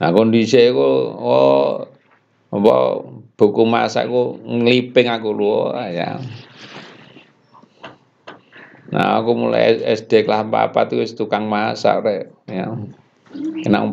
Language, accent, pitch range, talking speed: Indonesian, native, 105-140 Hz, 100 wpm